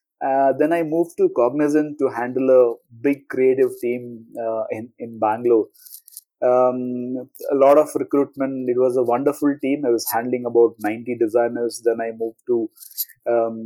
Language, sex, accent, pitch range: English, male, Indian, 115-150 Hz